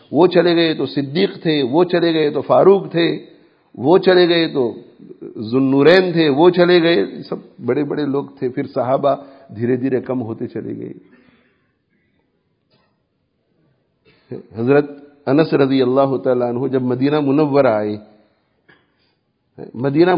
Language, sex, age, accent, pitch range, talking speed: English, male, 50-69, Indian, 140-195 Hz, 135 wpm